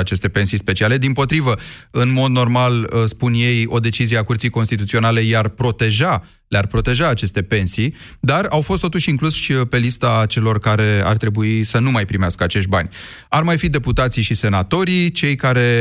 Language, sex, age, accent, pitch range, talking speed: Romanian, male, 30-49, native, 105-135 Hz, 180 wpm